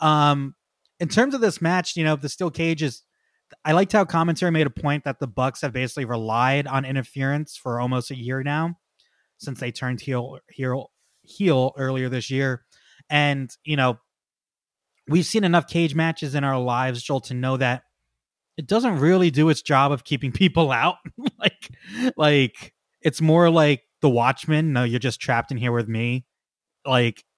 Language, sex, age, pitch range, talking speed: English, male, 20-39, 130-170 Hz, 180 wpm